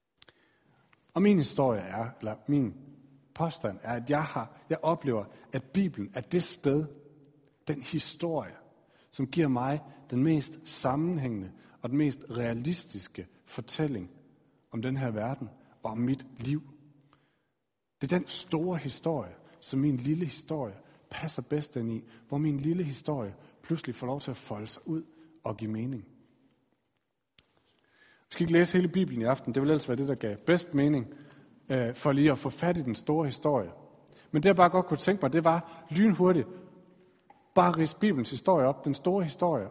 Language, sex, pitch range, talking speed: Danish, male, 130-165 Hz, 170 wpm